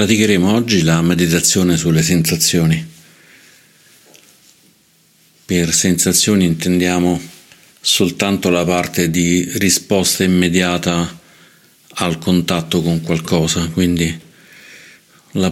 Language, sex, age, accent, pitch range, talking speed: Italian, male, 50-69, native, 85-90 Hz, 80 wpm